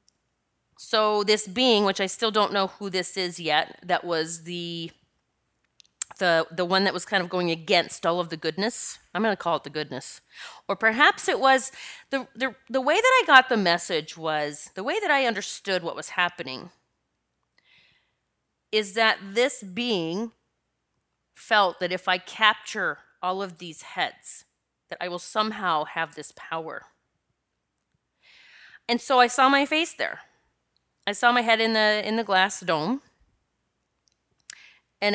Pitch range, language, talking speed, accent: 175-230 Hz, English, 160 wpm, American